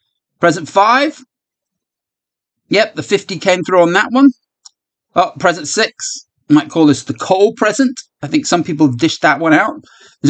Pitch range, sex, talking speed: 155-255 Hz, male, 170 wpm